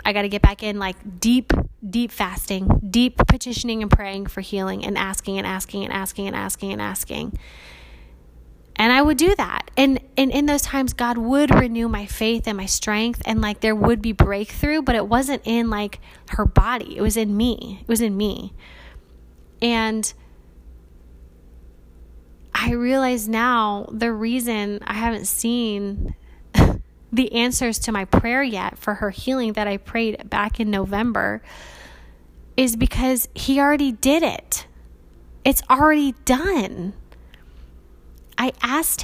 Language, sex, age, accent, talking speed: English, female, 20-39, American, 155 wpm